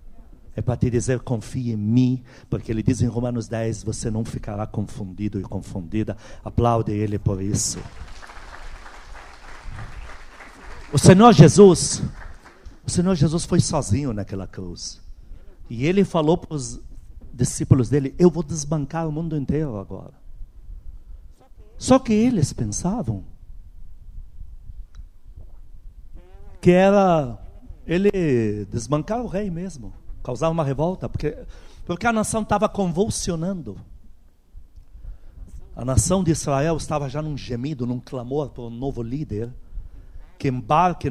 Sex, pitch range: male, 100-155 Hz